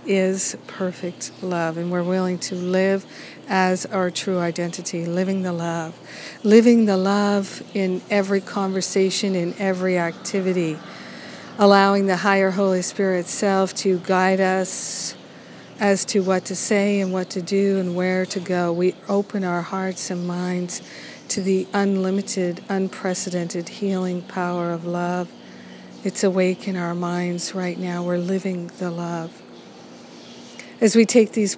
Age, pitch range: 50-69, 175-195 Hz